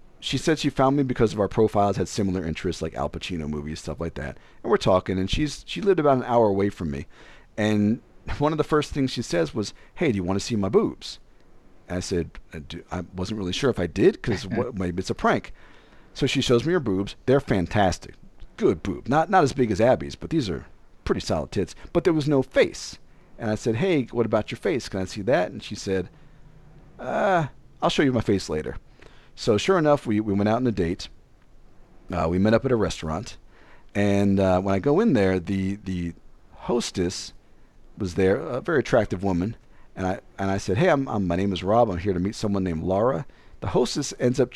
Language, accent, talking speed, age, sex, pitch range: English, American, 230 wpm, 40-59, male, 95-125 Hz